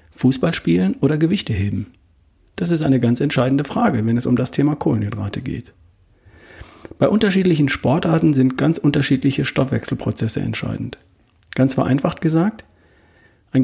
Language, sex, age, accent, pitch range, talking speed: German, male, 40-59, German, 105-145 Hz, 130 wpm